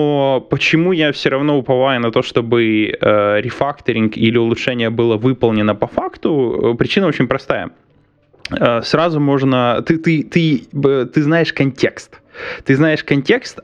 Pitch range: 120-155 Hz